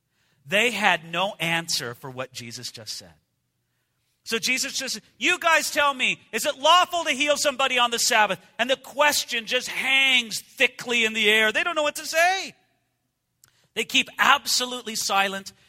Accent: American